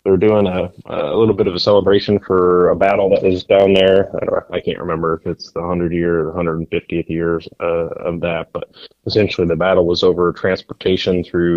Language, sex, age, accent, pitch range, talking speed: English, male, 20-39, American, 85-95 Hz, 220 wpm